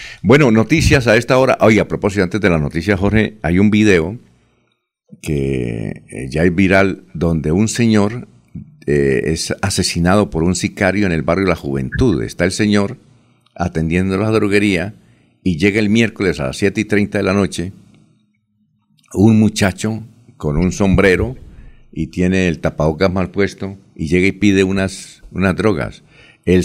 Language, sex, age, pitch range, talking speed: Spanish, male, 60-79, 85-110 Hz, 165 wpm